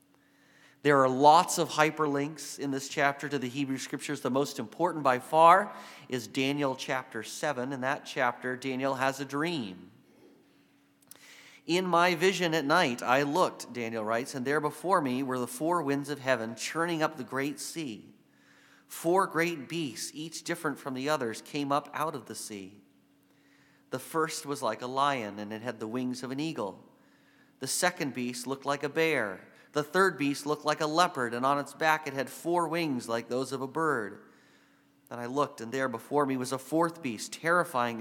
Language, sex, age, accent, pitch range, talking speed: English, male, 40-59, American, 130-160 Hz, 190 wpm